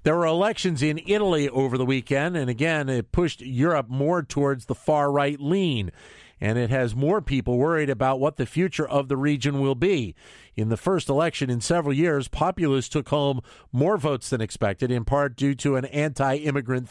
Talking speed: 190 wpm